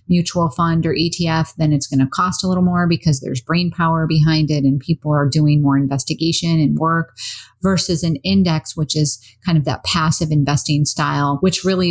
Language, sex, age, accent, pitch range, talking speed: English, female, 40-59, American, 150-180 Hz, 195 wpm